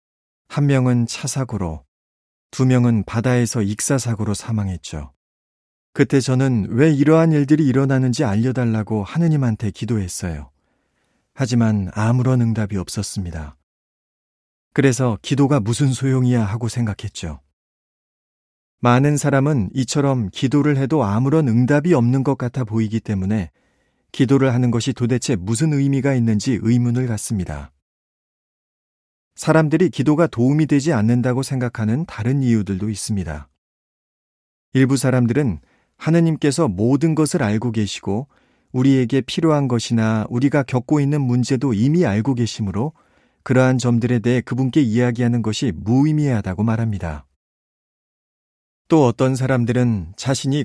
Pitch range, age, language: 105-135 Hz, 40-59, Korean